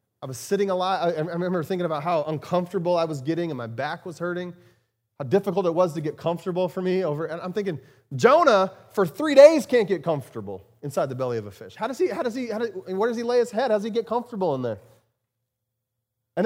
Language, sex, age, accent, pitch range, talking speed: English, male, 30-49, American, 135-225 Hz, 250 wpm